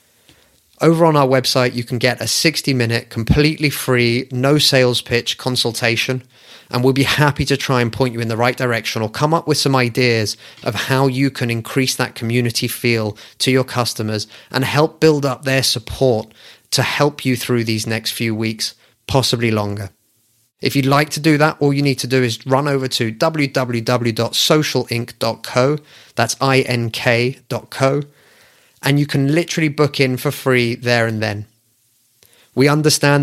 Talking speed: 165 wpm